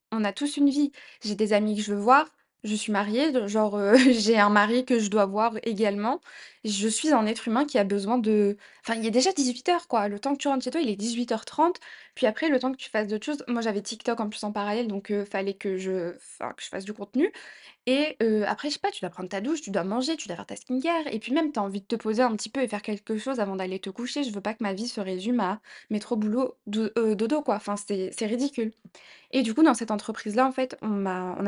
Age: 20-39